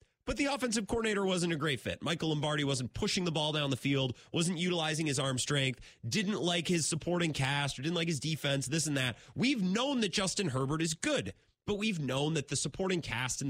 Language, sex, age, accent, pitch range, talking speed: English, male, 30-49, American, 115-190 Hz, 220 wpm